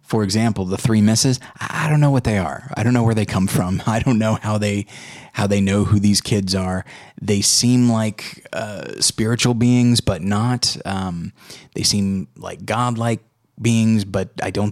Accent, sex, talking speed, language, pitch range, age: American, male, 190 wpm, English, 95-115 Hz, 20-39